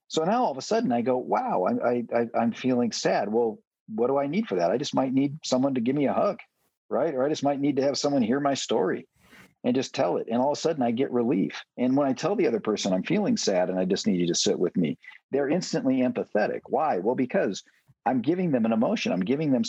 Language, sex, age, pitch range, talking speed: English, male, 50-69, 125-200 Hz, 260 wpm